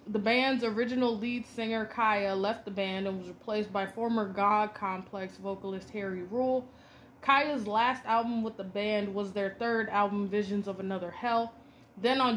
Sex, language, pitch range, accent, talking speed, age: female, English, 195-235 Hz, American, 170 wpm, 20-39